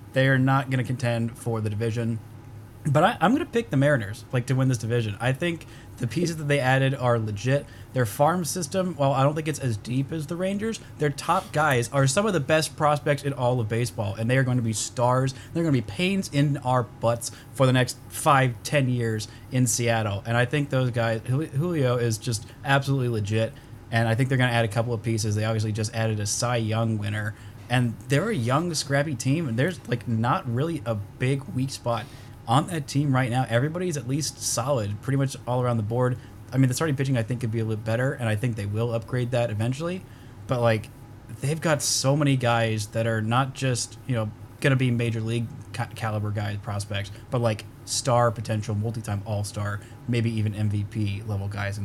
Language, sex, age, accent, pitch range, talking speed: English, male, 20-39, American, 115-135 Hz, 225 wpm